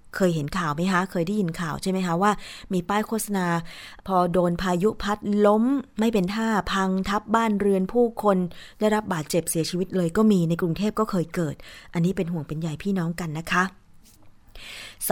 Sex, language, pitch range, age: female, Thai, 165-205 Hz, 20-39